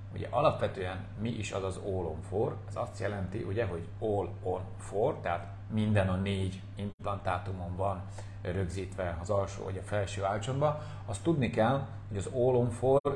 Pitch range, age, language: 95-115 Hz, 40-59, Hungarian